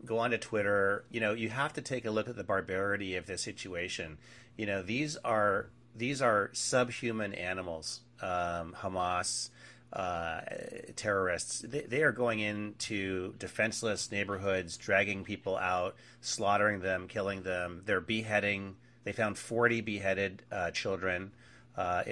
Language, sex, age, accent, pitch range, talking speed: English, male, 30-49, American, 95-120 Hz, 145 wpm